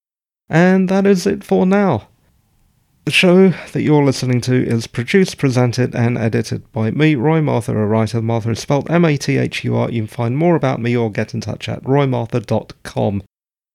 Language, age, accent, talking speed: English, 40-59, British, 170 wpm